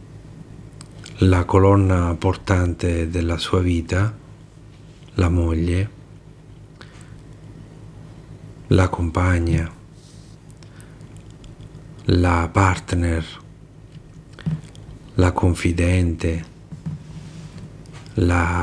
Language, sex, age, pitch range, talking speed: Italian, male, 50-69, 90-140 Hz, 50 wpm